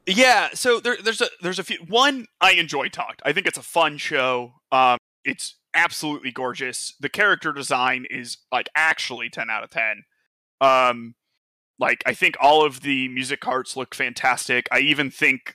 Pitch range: 130-165 Hz